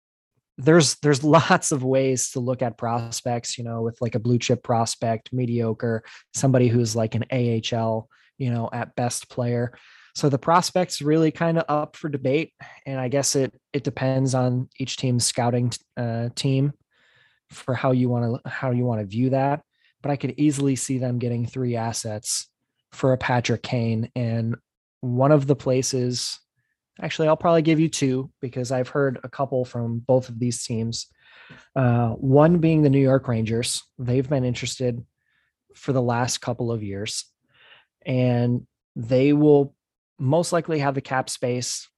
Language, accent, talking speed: English, American, 170 wpm